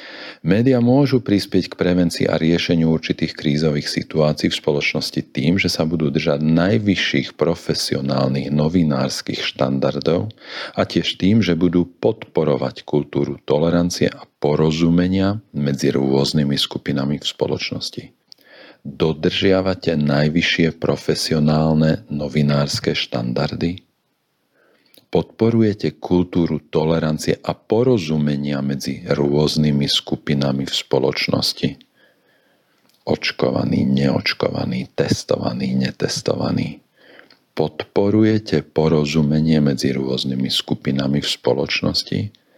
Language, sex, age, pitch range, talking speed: Slovak, male, 40-59, 75-90 Hz, 85 wpm